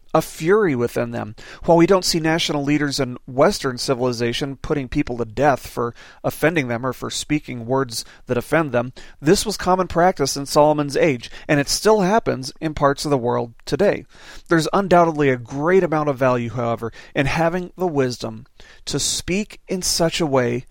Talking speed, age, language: 180 wpm, 40-59, English